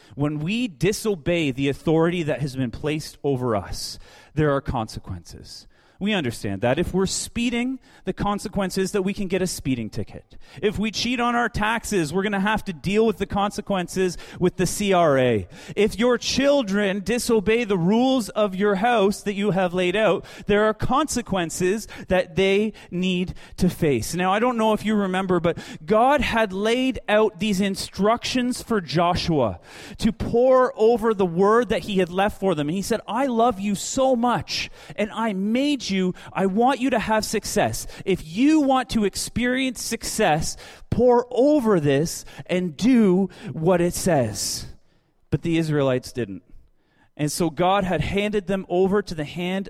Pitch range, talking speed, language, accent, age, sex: 160-220 Hz, 175 wpm, English, American, 30-49, male